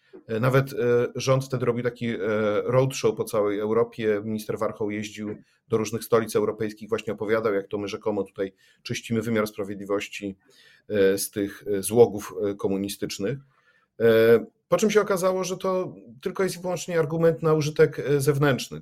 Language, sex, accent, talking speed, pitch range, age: Polish, male, native, 140 wpm, 110-135 Hz, 40-59